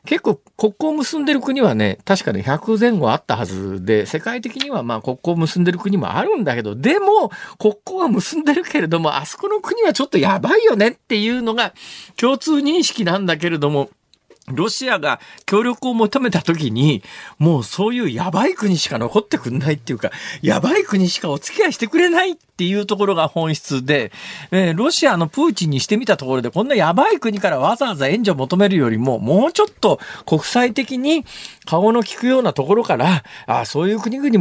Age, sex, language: 50-69, male, Japanese